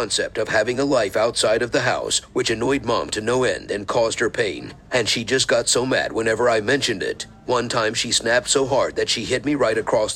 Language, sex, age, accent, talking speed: English, male, 50-69, American, 235 wpm